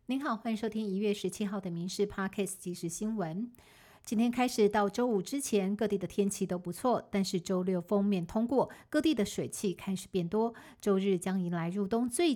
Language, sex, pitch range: Chinese, female, 180-220 Hz